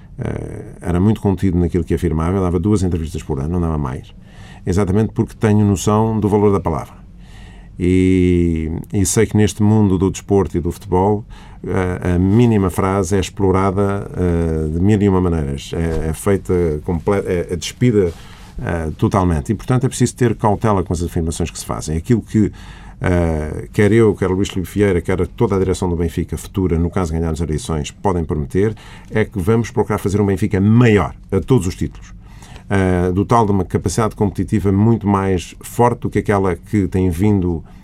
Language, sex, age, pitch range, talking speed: Portuguese, male, 50-69, 90-105 Hz, 180 wpm